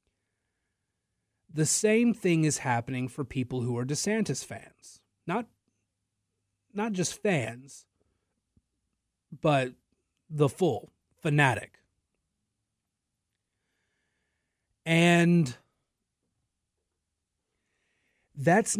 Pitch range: 115-170 Hz